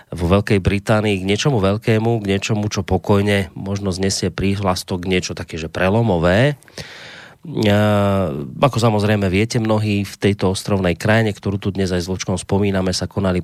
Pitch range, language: 90-105 Hz, Slovak